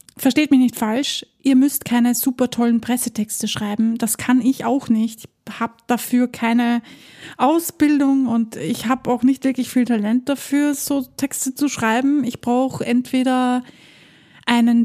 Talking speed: 155 wpm